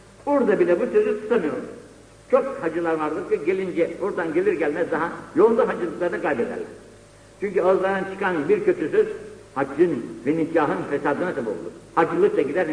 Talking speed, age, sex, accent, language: 130 wpm, 60-79, male, native, Turkish